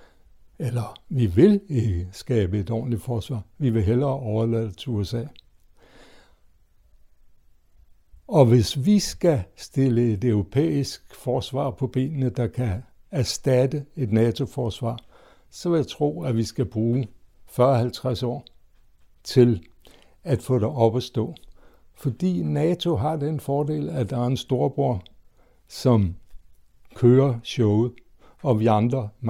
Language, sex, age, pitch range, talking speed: Danish, male, 60-79, 105-130 Hz, 130 wpm